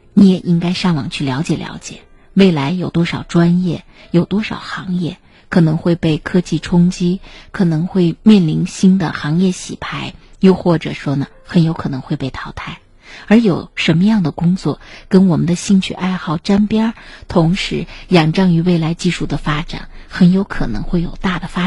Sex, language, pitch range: female, Chinese, 160-200 Hz